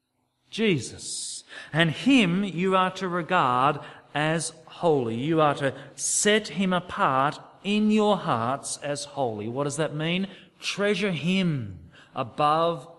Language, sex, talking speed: English, male, 125 wpm